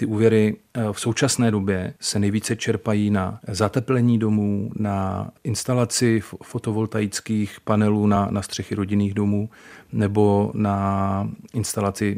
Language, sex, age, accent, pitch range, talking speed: Czech, male, 40-59, native, 100-115 Hz, 115 wpm